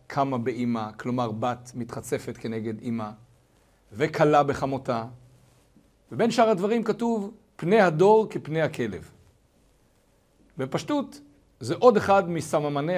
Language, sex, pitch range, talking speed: Hebrew, male, 120-170 Hz, 100 wpm